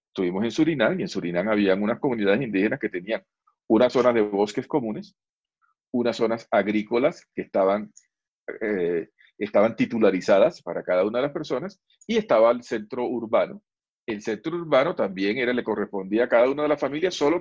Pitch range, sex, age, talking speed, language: 105-150 Hz, male, 40-59, 170 wpm, English